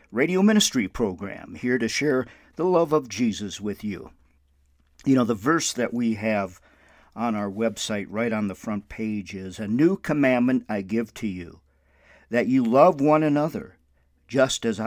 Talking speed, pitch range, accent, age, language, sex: 170 wpm, 100-125 Hz, American, 50-69, English, male